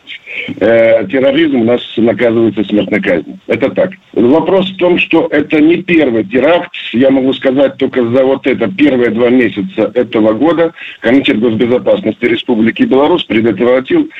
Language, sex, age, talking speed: Russian, male, 50-69, 145 wpm